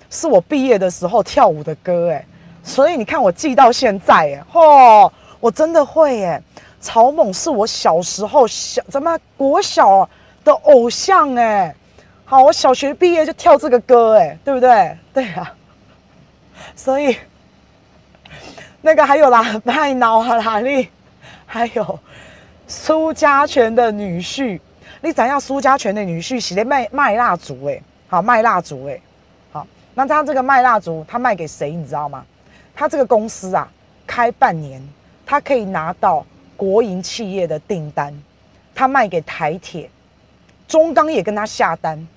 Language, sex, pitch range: Chinese, female, 185-275 Hz